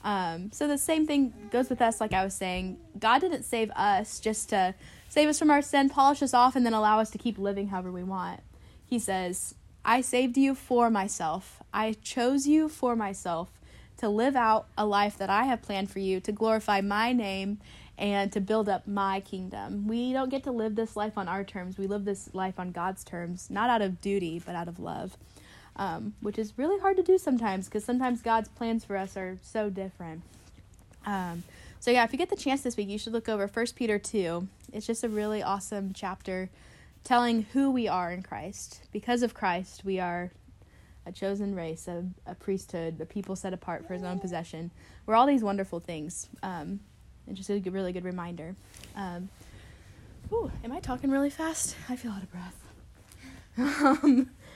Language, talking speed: English, 200 wpm